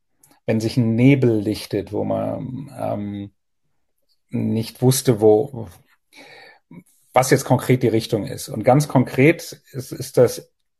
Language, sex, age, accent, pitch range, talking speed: German, male, 40-59, German, 115-140 Hz, 130 wpm